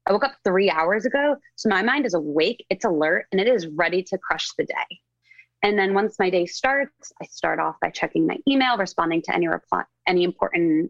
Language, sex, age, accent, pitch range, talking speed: English, female, 20-39, American, 170-215 Hz, 220 wpm